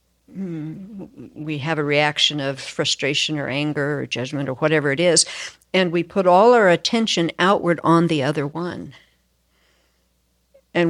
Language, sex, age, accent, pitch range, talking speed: English, female, 60-79, American, 140-180 Hz, 145 wpm